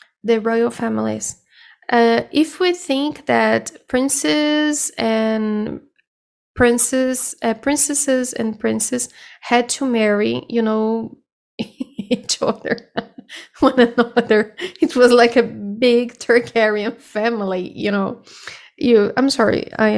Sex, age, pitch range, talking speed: female, 10-29, 220-260 Hz, 110 wpm